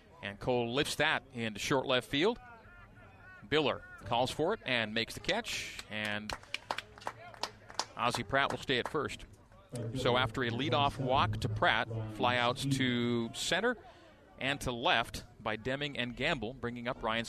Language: English